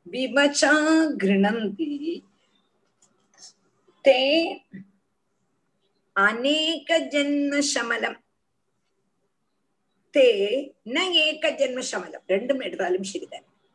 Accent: native